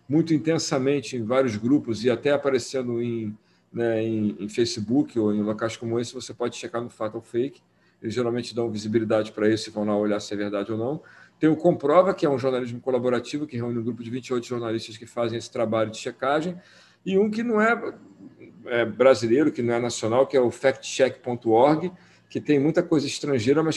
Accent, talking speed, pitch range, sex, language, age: Brazilian, 200 wpm, 120-160 Hz, male, Portuguese, 50-69